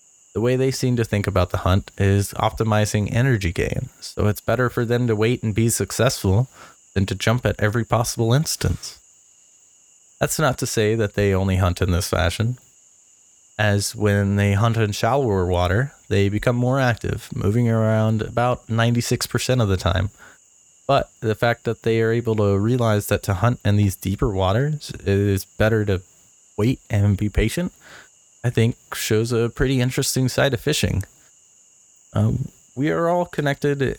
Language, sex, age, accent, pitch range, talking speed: English, male, 20-39, American, 100-120 Hz, 170 wpm